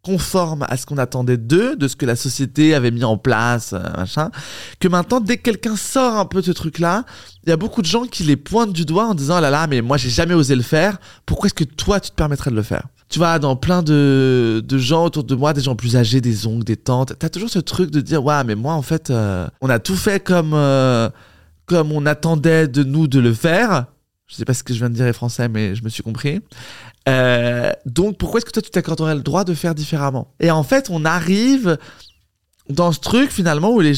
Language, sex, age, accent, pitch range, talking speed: French, male, 20-39, French, 120-170 Hz, 260 wpm